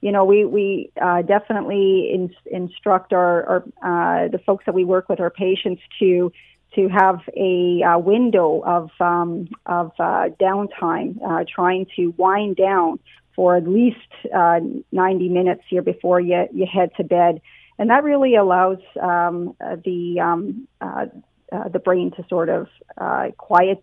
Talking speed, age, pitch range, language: 160 wpm, 40-59, 180-200 Hz, English